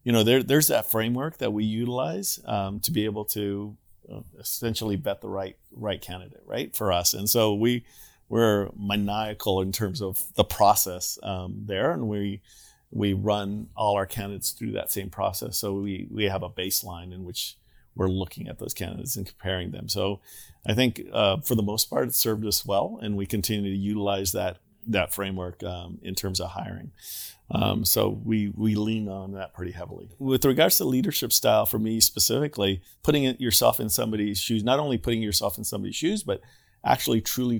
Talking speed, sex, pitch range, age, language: 190 wpm, male, 100-115 Hz, 40-59, English